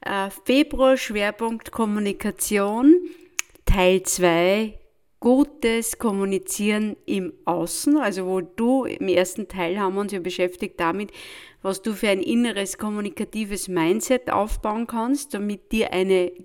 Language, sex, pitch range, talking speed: German, female, 200-255 Hz, 120 wpm